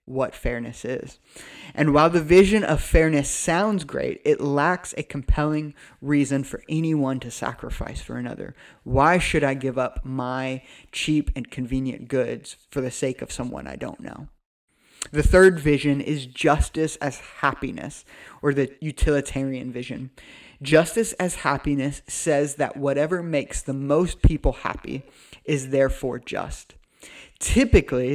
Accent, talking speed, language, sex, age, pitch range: American, 140 wpm, English, male, 20-39, 130-155 Hz